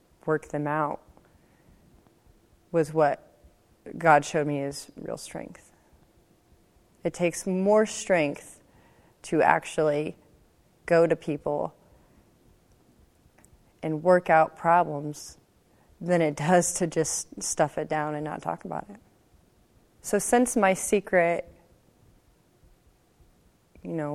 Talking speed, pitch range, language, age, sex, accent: 105 wpm, 155-185 Hz, English, 30-49, female, American